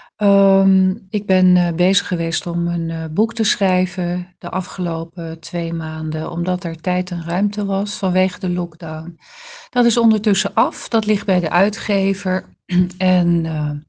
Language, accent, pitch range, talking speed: Dutch, Dutch, 170-200 Hz, 150 wpm